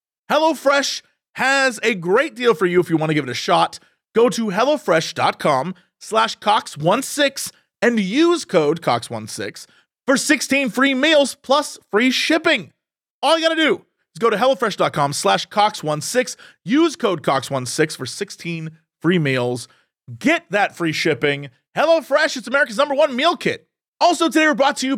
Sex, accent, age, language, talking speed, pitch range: male, American, 30-49, English, 160 wpm, 160-270 Hz